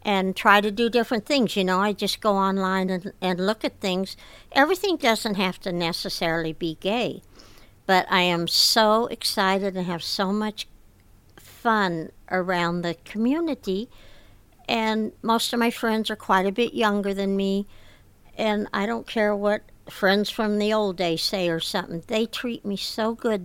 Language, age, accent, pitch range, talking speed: English, 60-79, American, 175-225 Hz, 170 wpm